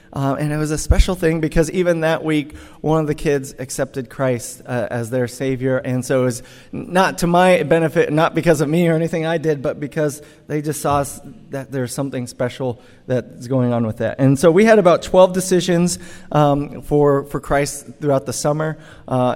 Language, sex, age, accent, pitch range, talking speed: English, male, 30-49, American, 130-160 Hz, 205 wpm